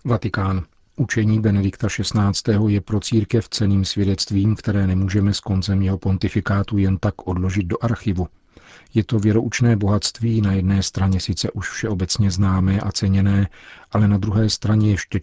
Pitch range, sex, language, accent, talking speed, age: 95-110 Hz, male, Czech, native, 150 wpm, 40-59